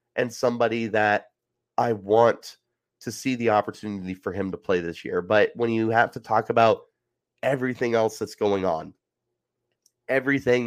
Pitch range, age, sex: 105-130 Hz, 30-49, male